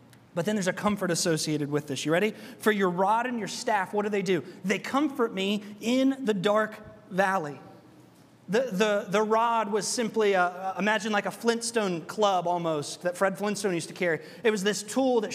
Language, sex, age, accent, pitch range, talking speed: English, male, 30-49, American, 195-245 Hz, 190 wpm